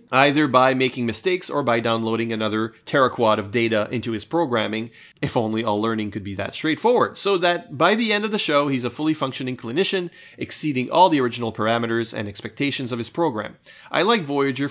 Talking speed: 195 wpm